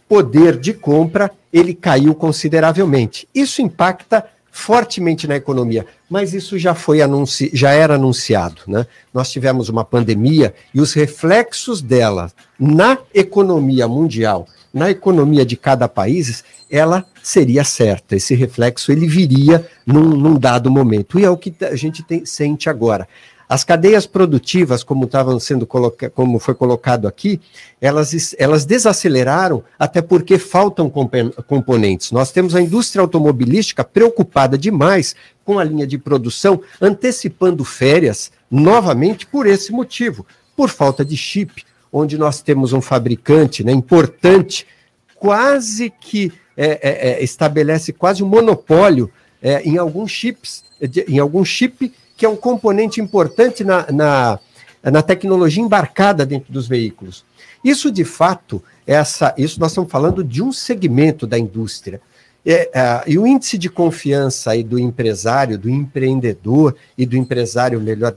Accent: Brazilian